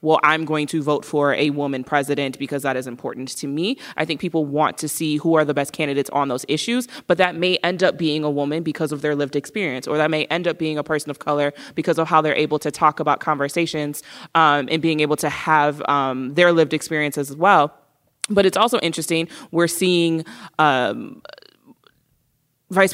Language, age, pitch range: English, 20-39, 145-165 Hz